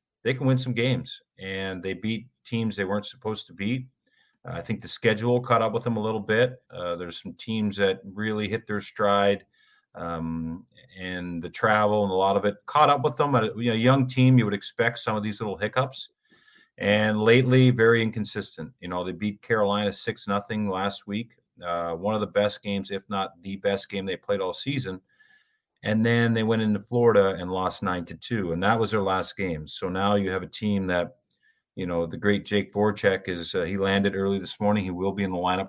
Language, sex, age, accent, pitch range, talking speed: English, male, 40-59, American, 95-120 Hz, 220 wpm